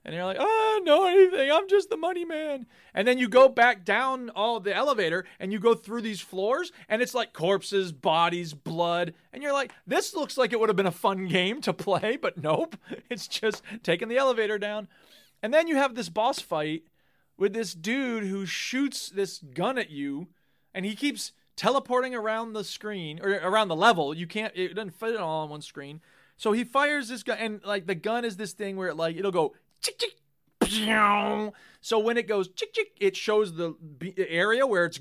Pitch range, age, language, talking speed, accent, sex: 175-235 Hz, 30-49, English, 210 wpm, American, male